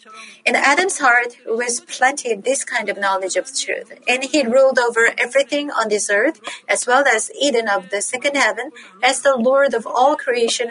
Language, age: Korean, 40-59